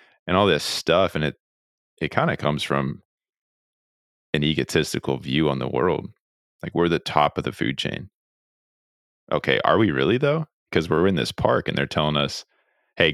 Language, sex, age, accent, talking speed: English, male, 30-49, American, 180 wpm